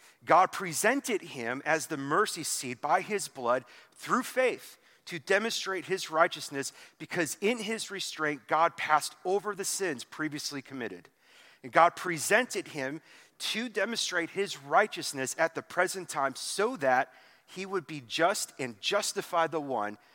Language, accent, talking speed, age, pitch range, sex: English, American, 145 wpm, 40-59, 140-190 Hz, male